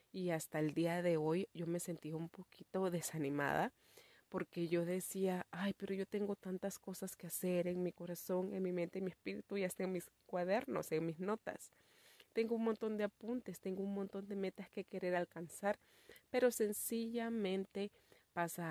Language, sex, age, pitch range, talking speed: Spanish, female, 30-49, 165-195 Hz, 180 wpm